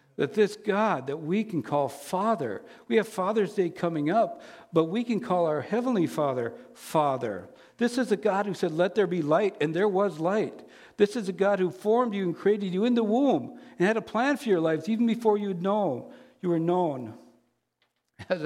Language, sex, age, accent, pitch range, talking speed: English, male, 60-79, American, 155-205 Hz, 200 wpm